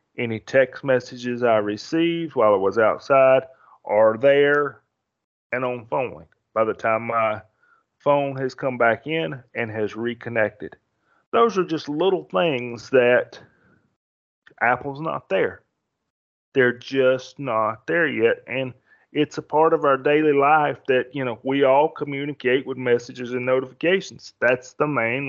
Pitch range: 120-145 Hz